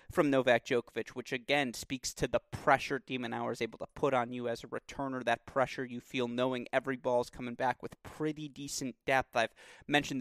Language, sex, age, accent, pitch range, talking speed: English, male, 30-49, American, 125-145 Hz, 210 wpm